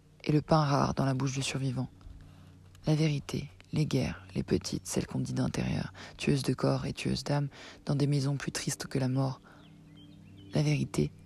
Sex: female